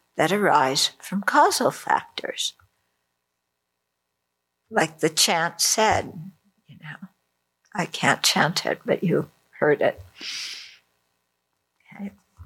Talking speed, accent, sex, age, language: 95 wpm, American, female, 60-79, English